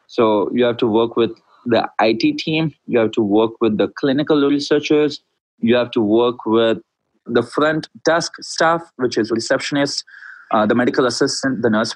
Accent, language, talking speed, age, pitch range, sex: Indian, English, 175 wpm, 30-49, 115-145 Hz, male